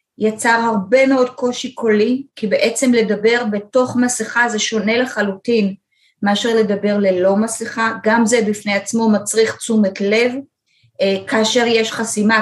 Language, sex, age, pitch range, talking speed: Hebrew, female, 30-49, 200-240 Hz, 135 wpm